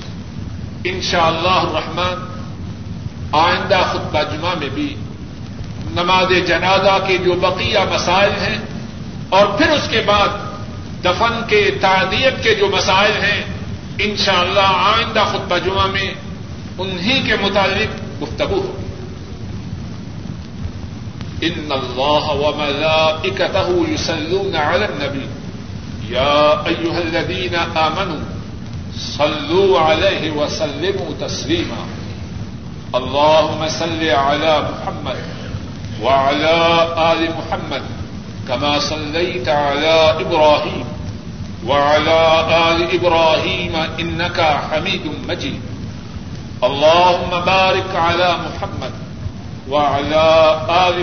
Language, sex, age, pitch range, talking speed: Urdu, male, 50-69, 140-175 Hz, 85 wpm